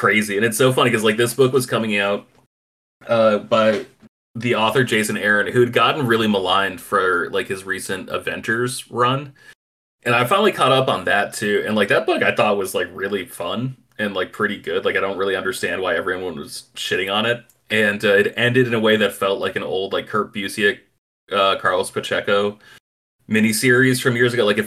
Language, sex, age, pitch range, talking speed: English, male, 30-49, 100-120 Hz, 210 wpm